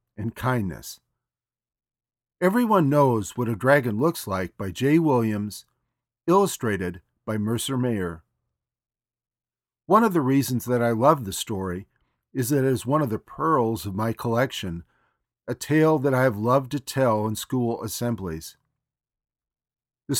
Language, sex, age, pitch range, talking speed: English, male, 50-69, 105-140 Hz, 145 wpm